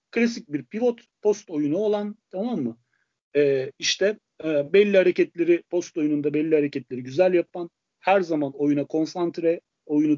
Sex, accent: male, native